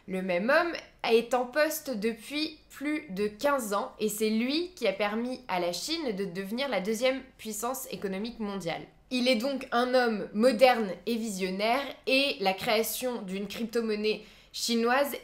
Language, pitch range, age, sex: French, 210-255 Hz, 20-39, female